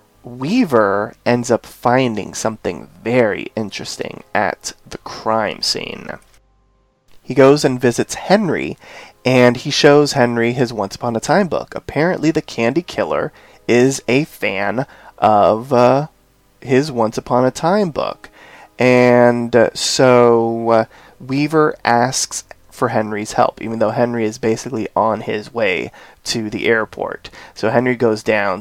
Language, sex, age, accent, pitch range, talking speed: English, male, 30-49, American, 120-140 Hz, 135 wpm